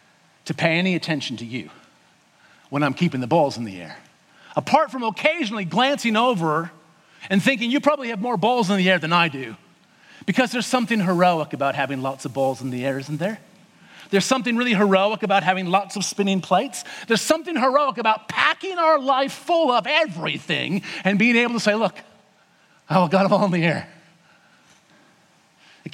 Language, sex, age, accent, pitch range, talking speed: English, male, 40-59, American, 160-260 Hz, 185 wpm